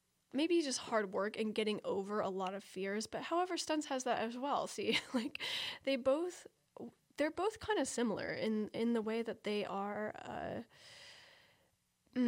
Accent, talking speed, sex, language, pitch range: American, 170 wpm, female, English, 205-245 Hz